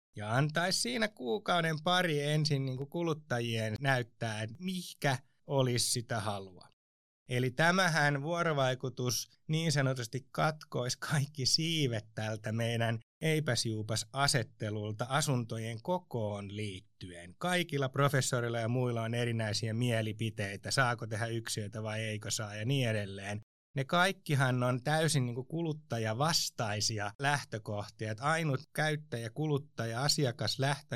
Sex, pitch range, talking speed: male, 115-150 Hz, 110 wpm